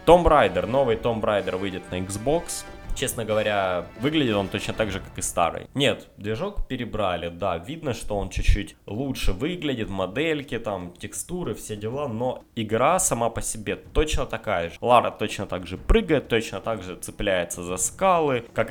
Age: 20-39